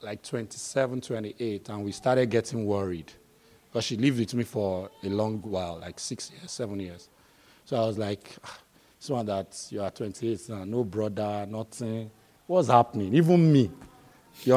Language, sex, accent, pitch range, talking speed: English, male, Nigerian, 110-140 Hz, 165 wpm